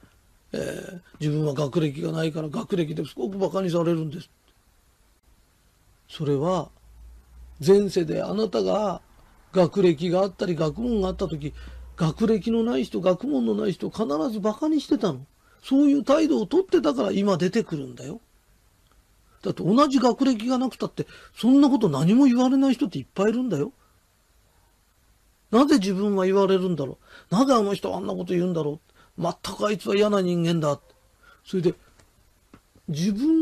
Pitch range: 155-235 Hz